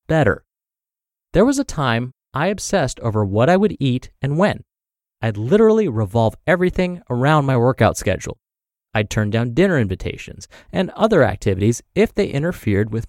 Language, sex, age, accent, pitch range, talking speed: English, male, 30-49, American, 110-165 Hz, 155 wpm